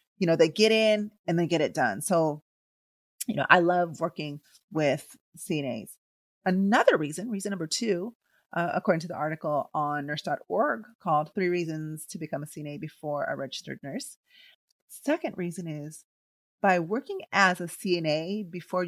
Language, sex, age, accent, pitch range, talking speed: English, female, 30-49, American, 160-210 Hz, 160 wpm